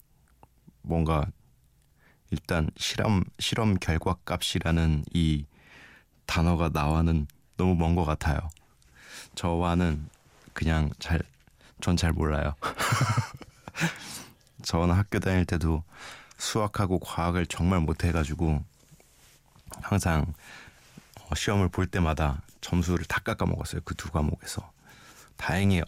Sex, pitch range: male, 75-90 Hz